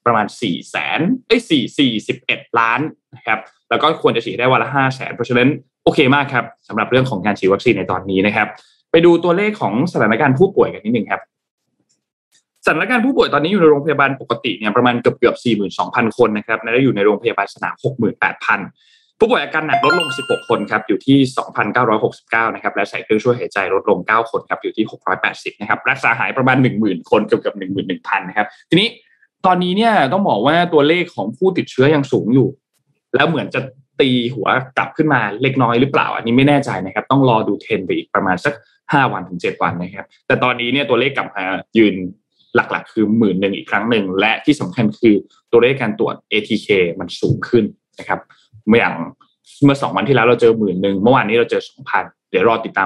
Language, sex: Thai, male